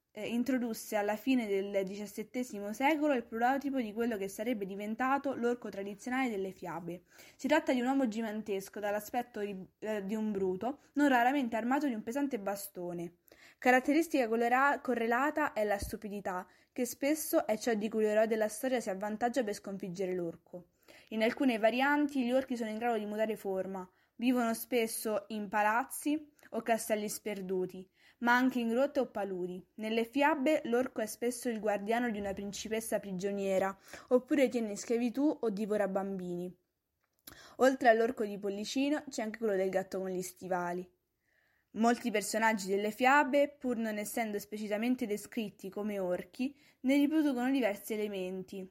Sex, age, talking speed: female, 20-39, 155 wpm